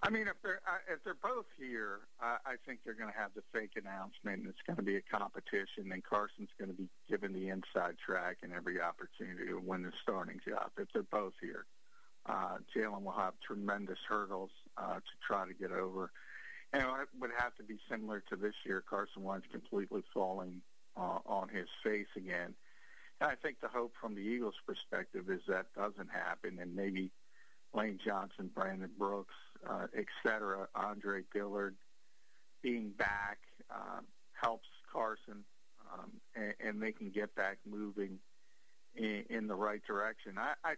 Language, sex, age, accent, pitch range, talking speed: English, male, 50-69, American, 95-110 Hz, 175 wpm